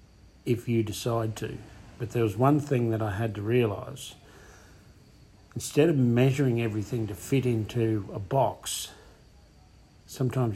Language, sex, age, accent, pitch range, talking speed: English, male, 50-69, Australian, 105-120 Hz, 135 wpm